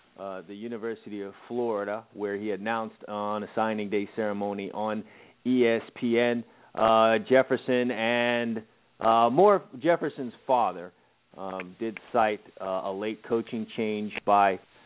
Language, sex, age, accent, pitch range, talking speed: English, male, 30-49, American, 100-130 Hz, 125 wpm